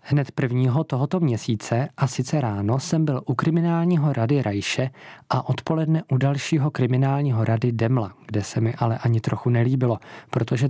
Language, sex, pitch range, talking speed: Czech, male, 110-140 Hz, 155 wpm